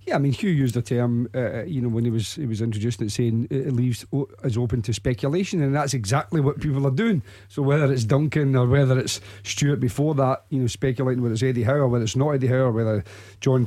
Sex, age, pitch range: male, 40-59, 120-145 Hz